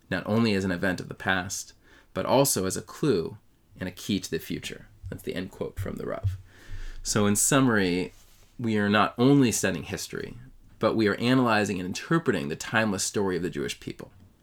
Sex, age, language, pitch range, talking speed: male, 20-39, English, 95-115 Hz, 200 wpm